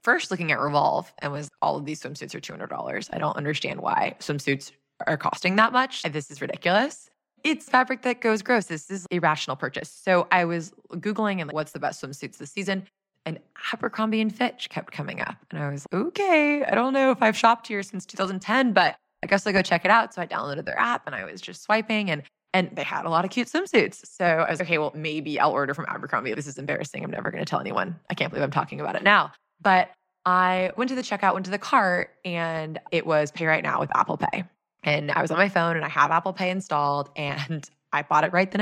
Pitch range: 150-200 Hz